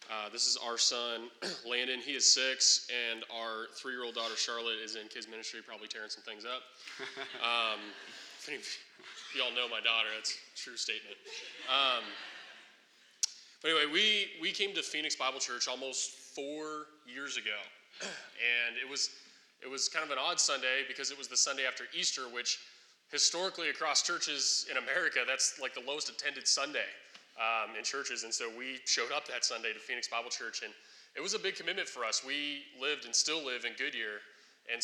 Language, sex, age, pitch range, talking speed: English, male, 20-39, 115-145 Hz, 190 wpm